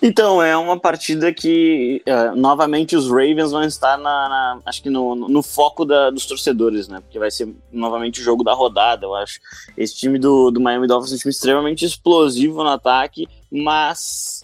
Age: 20-39